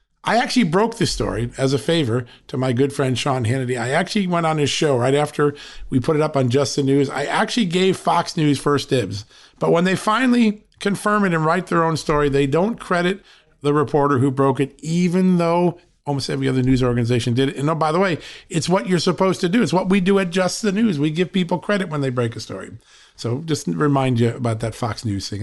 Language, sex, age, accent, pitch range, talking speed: English, male, 40-59, American, 130-185 Hz, 245 wpm